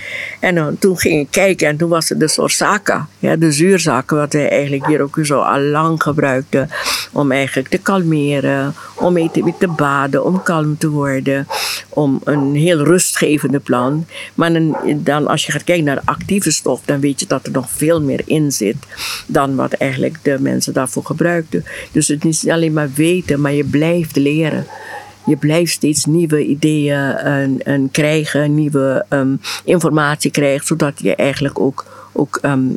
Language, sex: English, female